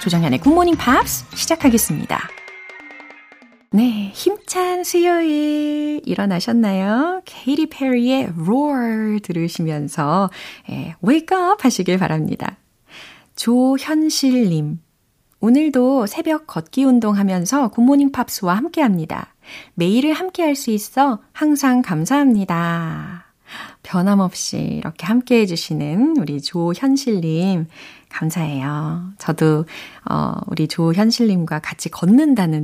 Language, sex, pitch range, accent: Korean, female, 165-265 Hz, native